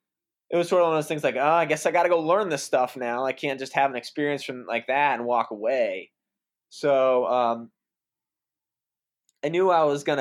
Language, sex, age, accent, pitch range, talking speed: English, male, 20-39, American, 115-145 Hz, 230 wpm